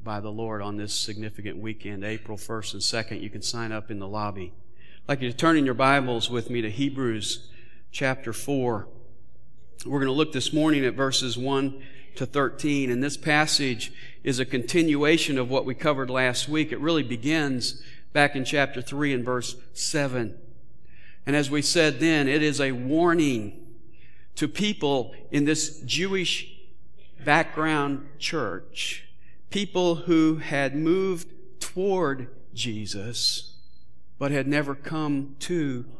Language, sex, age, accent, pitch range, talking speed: English, male, 50-69, American, 120-160 Hz, 155 wpm